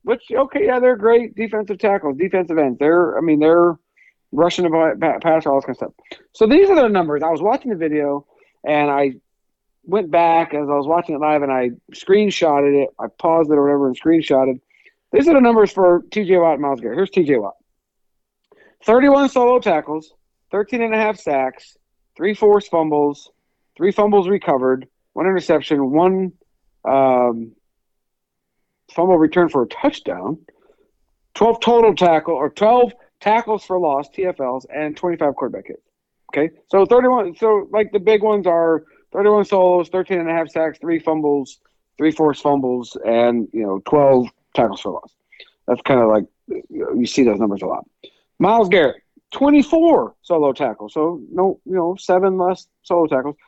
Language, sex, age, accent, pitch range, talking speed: English, male, 50-69, American, 150-215 Hz, 175 wpm